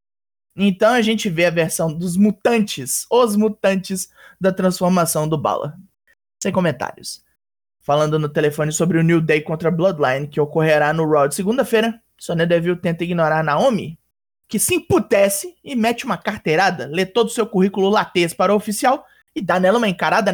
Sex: male